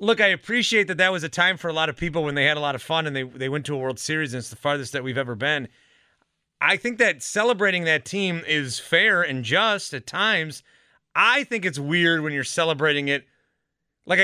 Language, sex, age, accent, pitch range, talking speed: English, male, 30-49, American, 135-180 Hz, 240 wpm